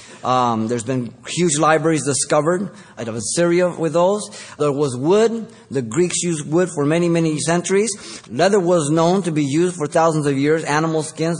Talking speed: 180 wpm